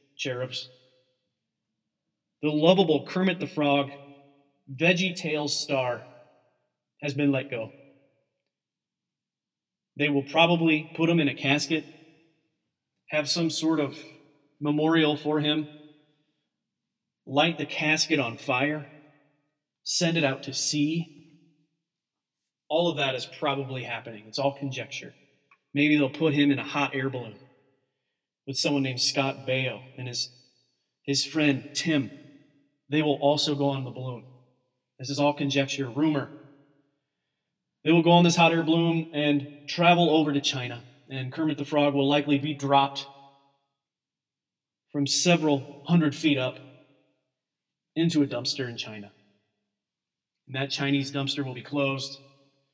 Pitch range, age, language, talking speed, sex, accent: 135-150 Hz, 30-49, English, 130 wpm, male, American